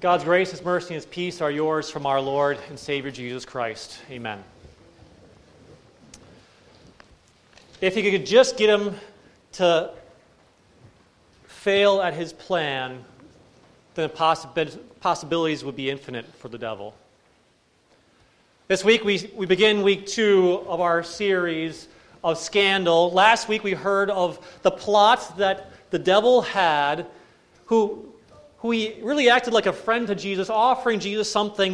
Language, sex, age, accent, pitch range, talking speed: English, male, 30-49, American, 135-200 Hz, 135 wpm